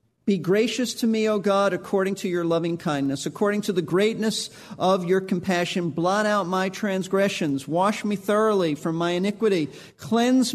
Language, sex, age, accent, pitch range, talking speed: English, male, 50-69, American, 190-240 Hz, 165 wpm